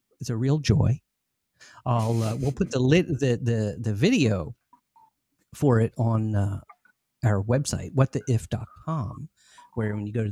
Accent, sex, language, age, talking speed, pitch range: American, male, English, 40-59, 150 wpm, 105-140 Hz